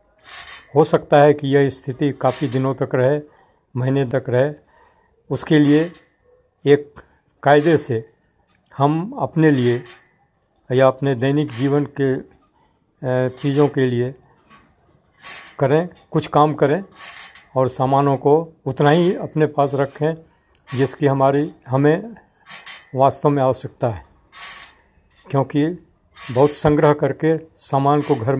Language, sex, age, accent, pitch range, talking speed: Hindi, male, 60-79, native, 130-150 Hz, 115 wpm